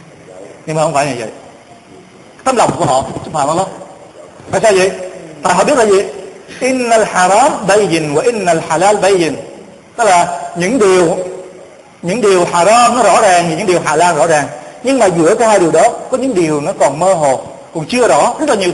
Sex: male